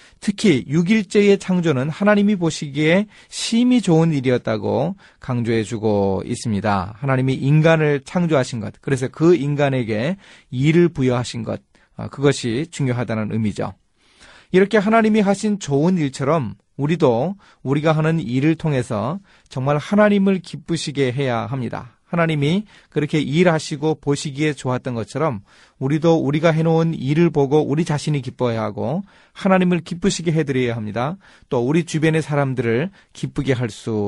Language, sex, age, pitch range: Korean, male, 30-49, 115-170 Hz